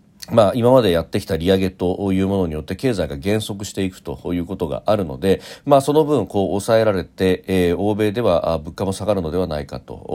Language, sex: Japanese, male